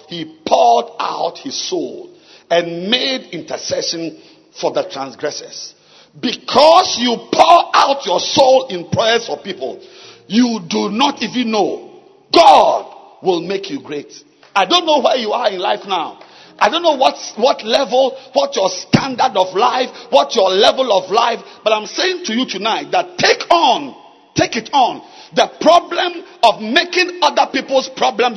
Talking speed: 155 wpm